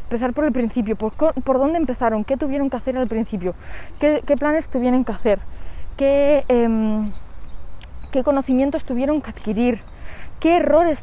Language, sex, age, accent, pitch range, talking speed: Spanish, female, 20-39, Spanish, 225-280 Hz, 160 wpm